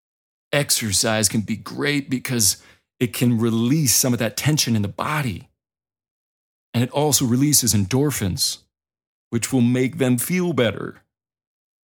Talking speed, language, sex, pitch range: 130 wpm, English, male, 100-130 Hz